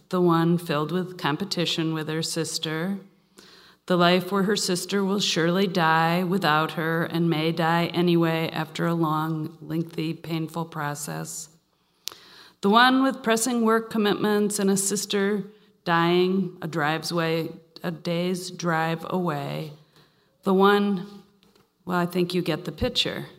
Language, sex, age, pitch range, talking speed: English, female, 40-59, 165-195 Hz, 140 wpm